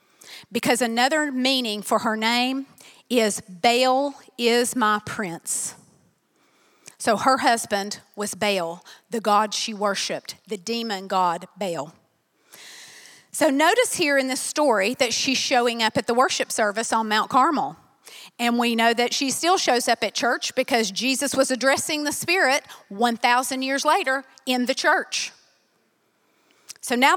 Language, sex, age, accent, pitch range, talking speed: English, female, 40-59, American, 230-285 Hz, 145 wpm